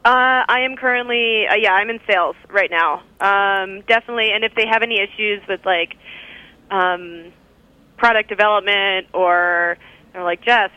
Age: 20-39